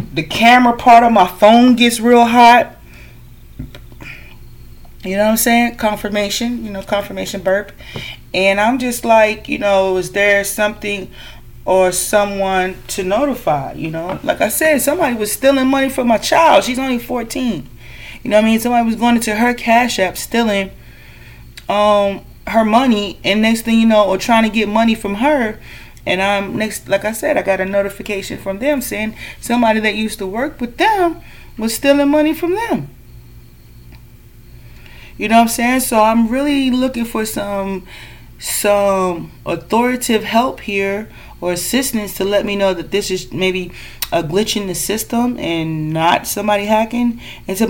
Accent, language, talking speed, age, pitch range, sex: American, English, 170 wpm, 30-49, 190-235 Hz, female